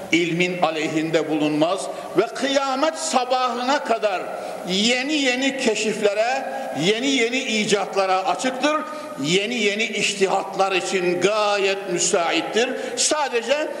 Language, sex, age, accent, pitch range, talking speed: Turkish, male, 60-79, native, 185-250 Hz, 90 wpm